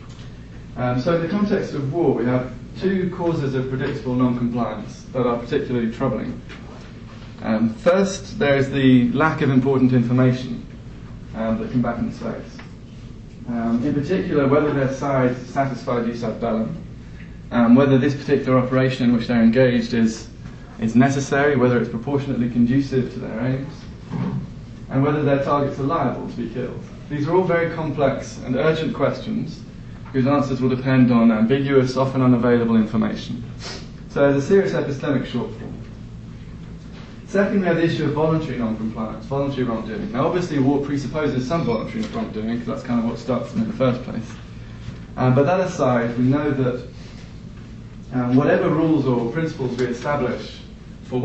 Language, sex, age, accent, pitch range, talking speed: English, male, 20-39, British, 120-145 Hz, 160 wpm